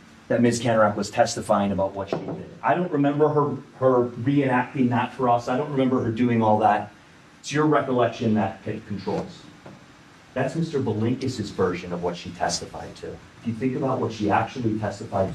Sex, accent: male, American